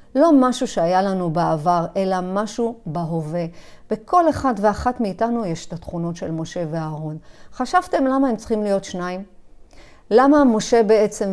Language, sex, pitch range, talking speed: Hebrew, female, 175-230 Hz, 145 wpm